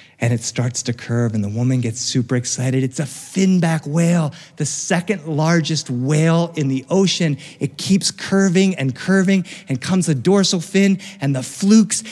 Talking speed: 175 wpm